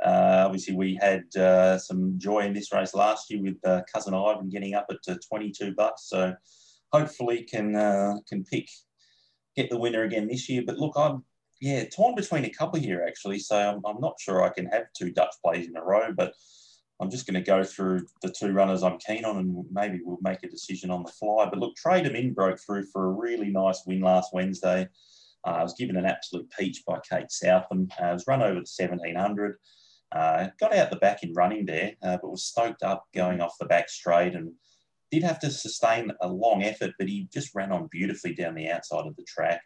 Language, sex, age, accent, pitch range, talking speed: English, male, 20-39, Australian, 90-105 Hz, 225 wpm